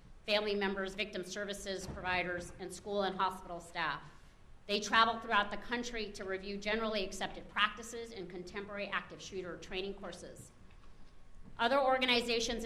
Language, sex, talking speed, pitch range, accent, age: English, female, 135 wpm, 175-215 Hz, American, 40-59